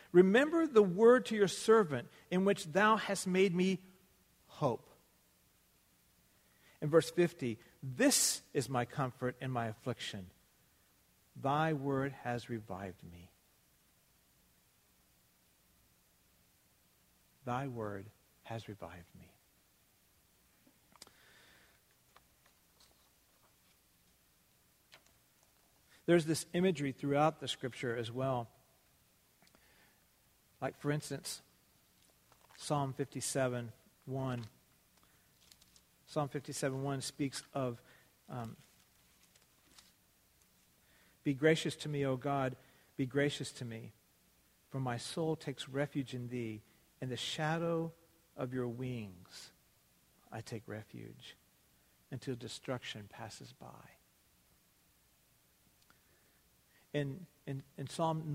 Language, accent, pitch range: English, American, 105-150 Hz